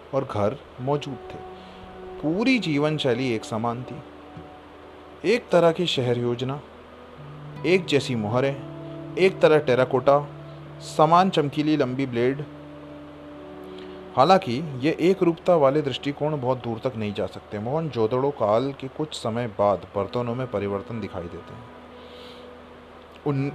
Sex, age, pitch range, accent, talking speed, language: male, 30-49, 100-150 Hz, native, 115 wpm, Hindi